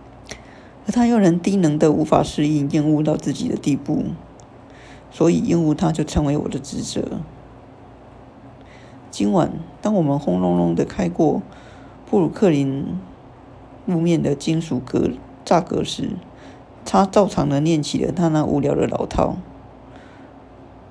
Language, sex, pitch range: Chinese, female, 135-170 Hz